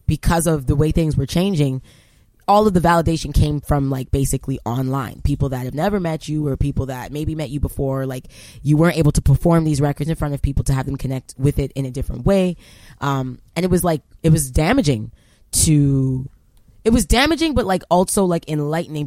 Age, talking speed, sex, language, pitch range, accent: 20-39, 215 wpm, female, English, 135-165 Hz, American